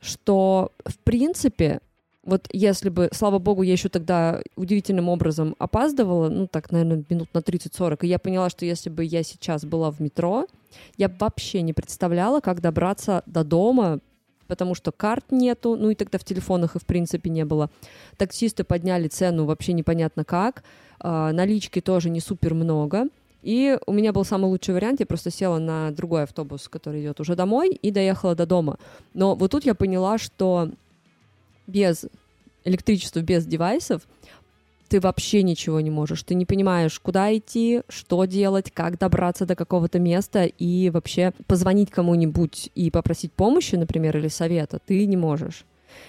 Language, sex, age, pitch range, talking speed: Russian, female, 20-39, 165-195 Hz, 165 wpm